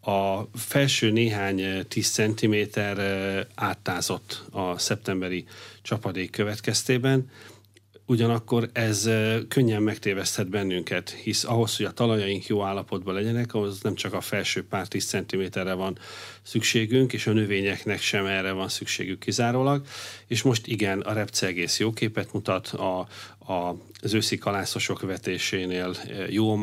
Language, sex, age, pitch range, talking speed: Hungarian, male, 40-59, 100-115 Hz, 125 wpm